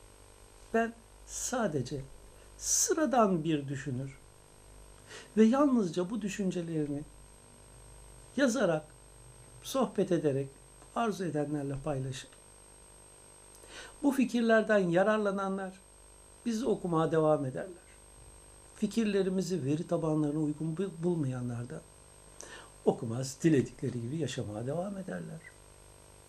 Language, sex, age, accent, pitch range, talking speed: Turkish, male, 60-79, native, 130-205 Hz, 80 wpm